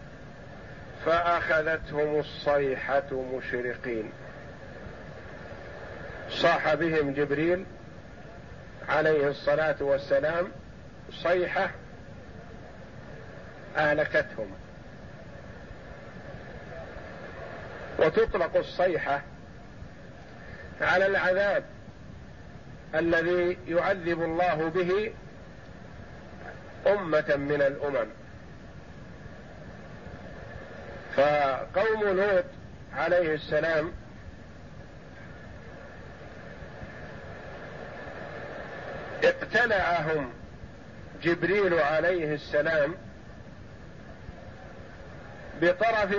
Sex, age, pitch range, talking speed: male, 50-69, 150-190 Hz, 40 wpm